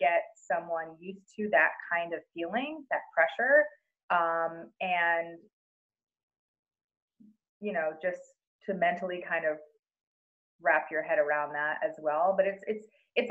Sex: female